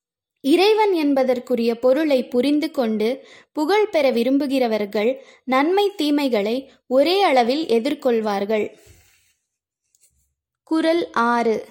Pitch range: 250-325 Hz